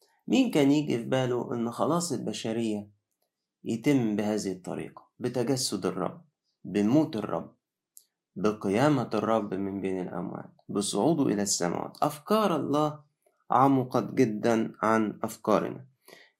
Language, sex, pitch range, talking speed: Arabic, male, 115-145 Hz, 100 wpm